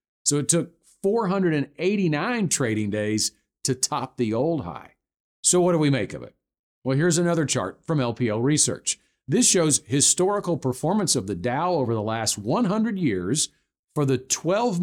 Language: English